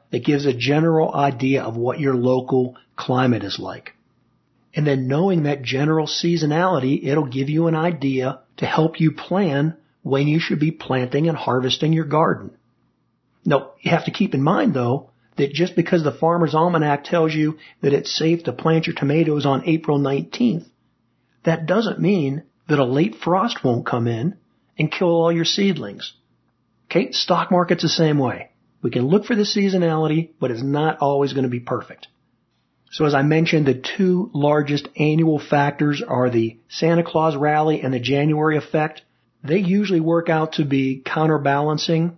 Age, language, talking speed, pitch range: 40-59, English, 175 wpm, 140-165 Hz